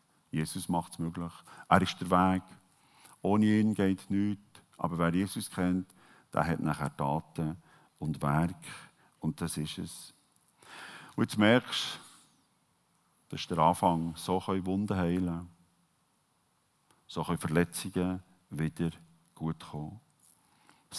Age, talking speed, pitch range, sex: 50-69, 125 wpm, 85-110 Hz, male